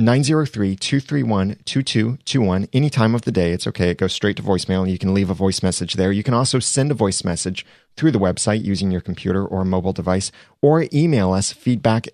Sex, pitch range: male, 95-125 Hz